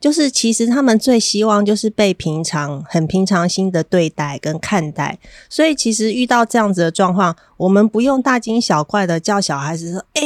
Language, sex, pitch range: Chinese, female, 170-220 Hz